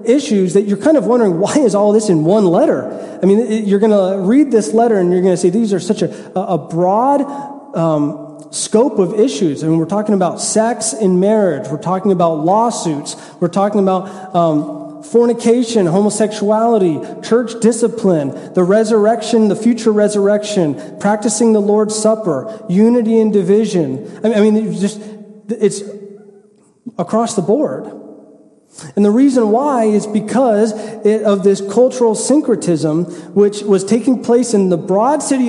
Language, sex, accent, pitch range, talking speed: English, male, American, 185-225 Hz, 160 wpm